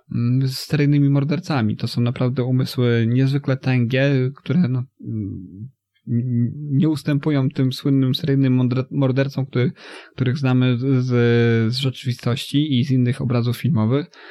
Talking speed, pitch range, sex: 115 wpm, 125-140 Hz, male